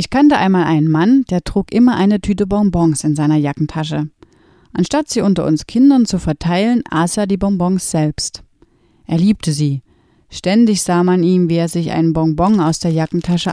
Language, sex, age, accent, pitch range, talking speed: German, female, 30-49, German, 160-210 Hz, 180 wpm